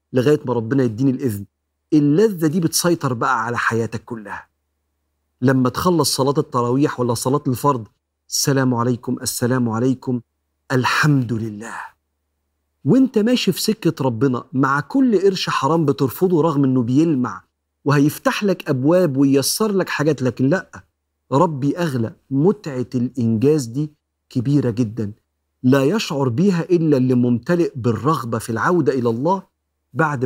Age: 50-69